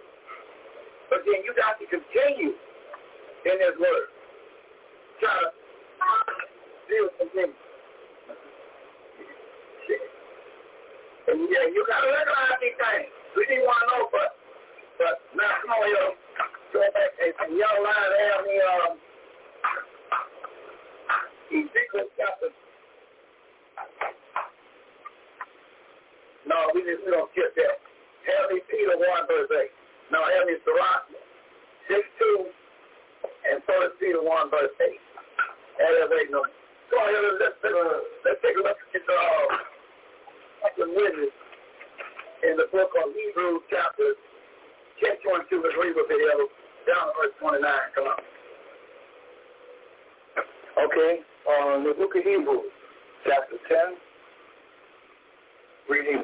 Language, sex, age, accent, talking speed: English, male, 50-69, American, 105 wpm